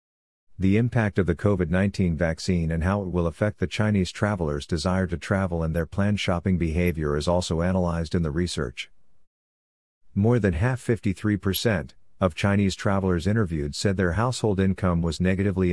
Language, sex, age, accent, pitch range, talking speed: English, male, 50-69, American, 85-100 Hz, 165 wpm